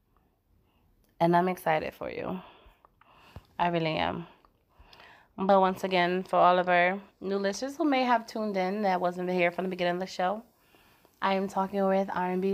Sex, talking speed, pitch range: female, 175 wpm, 170-200 Hz